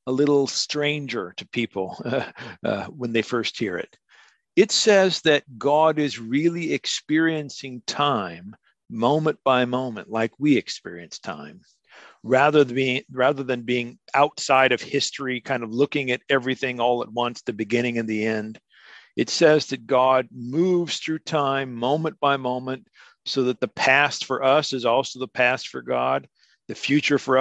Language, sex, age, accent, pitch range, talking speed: Swedish, male, 50-69, American, 120-140 Hz, 160 wpm